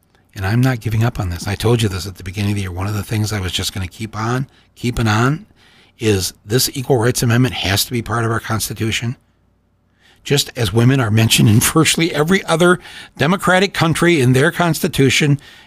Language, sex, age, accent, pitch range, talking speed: English, male, 60-79, American, 95-135 Hz, 210 wpm